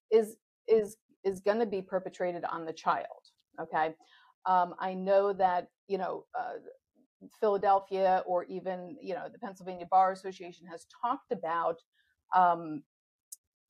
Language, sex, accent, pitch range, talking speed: English, female, American, 175-215 Hz, 135 wpm